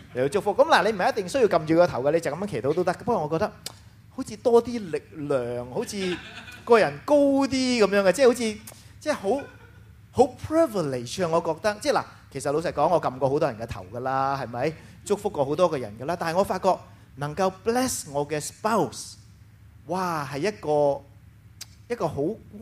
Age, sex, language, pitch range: 30-49, male, English, 115-185 Hz